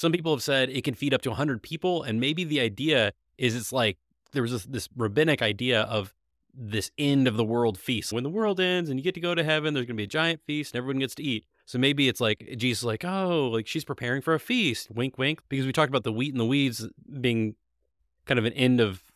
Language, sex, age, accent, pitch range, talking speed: English, male, 30-49, American, 110-135 Hz, 265 wpm